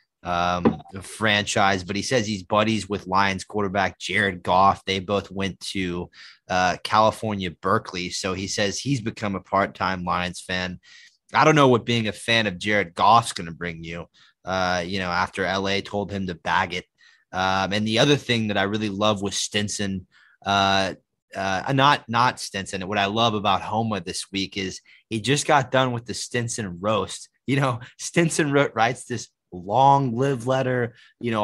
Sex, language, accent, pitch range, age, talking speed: male, English, American, 100-125 Hz, 20-39, 180 wpm